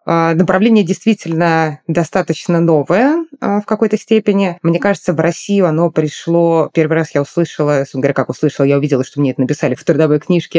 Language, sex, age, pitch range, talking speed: Russian, female, 20-39, 145-195 Hz, 160 wpm